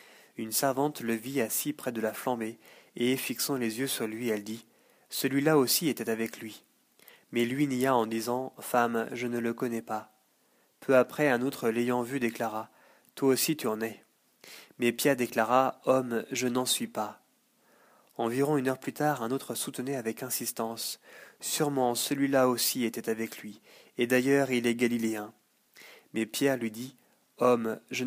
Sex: male